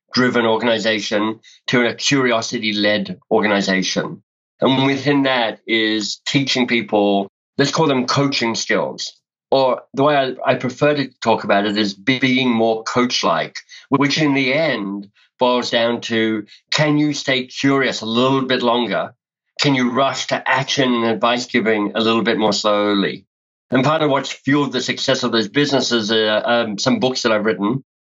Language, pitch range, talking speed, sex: English, 115-140 Hz, 160 wpm, male